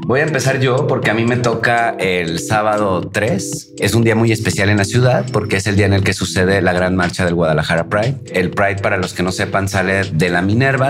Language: Spanish